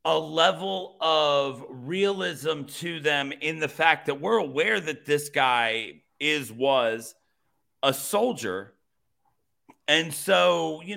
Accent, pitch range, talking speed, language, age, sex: American, 125-170 Hz, 120 wpm, English, 40-59, male